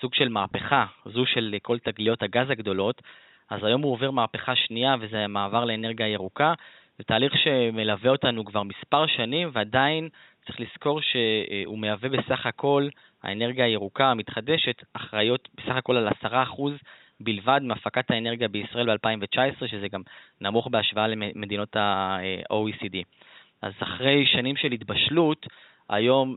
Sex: male